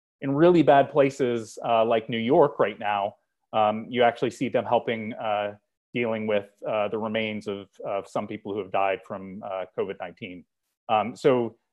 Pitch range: 105-130 Hz